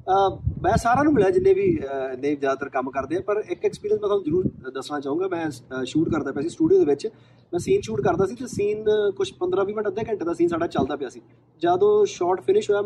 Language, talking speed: Punjabi, 230 wpm